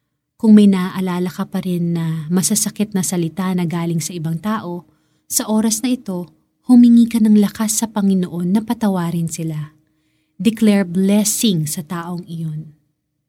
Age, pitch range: 30-49, 165-220 Hz